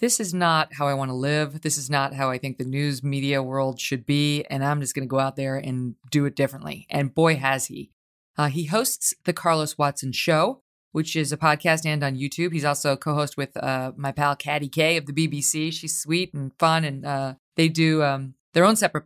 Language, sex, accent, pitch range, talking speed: English, female, American, 140-185 Hz, 235 wpm